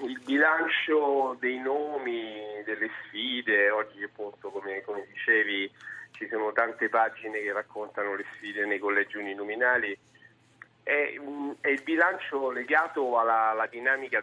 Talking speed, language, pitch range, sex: 125 wpm, Italian, 105-140 Hz, male